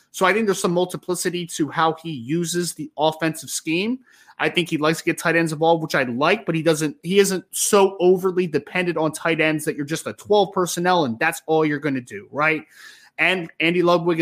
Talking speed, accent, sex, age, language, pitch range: 225 wpm, American, male, 20-39, English, 150-185 Hz